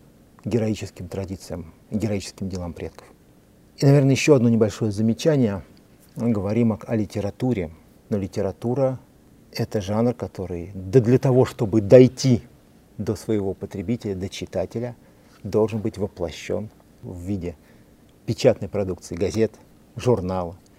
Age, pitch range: 50-69, 95-120 Hz